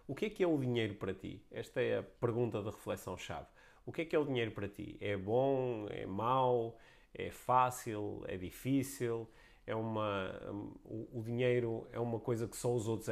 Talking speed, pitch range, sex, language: 200 wpm, 105-130 Hz, male, Portuguese